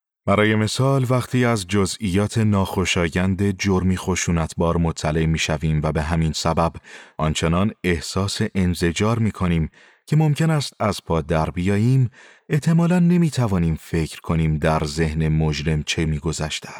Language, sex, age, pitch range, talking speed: Persian, male, 30-49, 85-120 Hz, 130 wpm